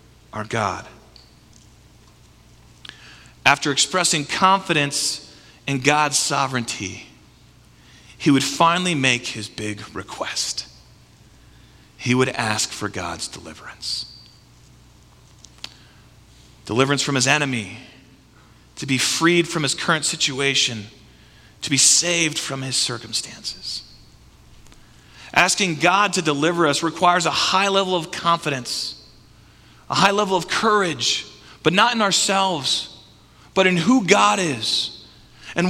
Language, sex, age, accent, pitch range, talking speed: English, male, 40-59, American, 140-215 Hz, 110 wpm